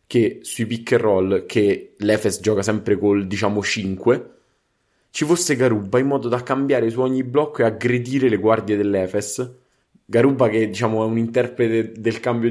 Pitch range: 105-130 Hz